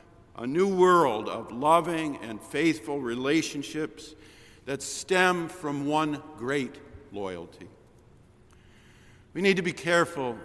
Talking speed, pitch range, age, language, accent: 110 wpm, 115-155 Hz, 50-69, English, American